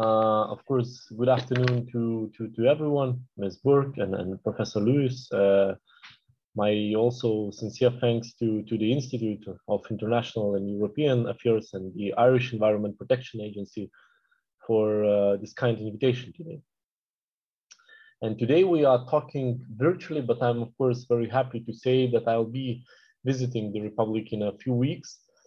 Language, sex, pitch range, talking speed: English, male, 110-140 Hz, 155 wpm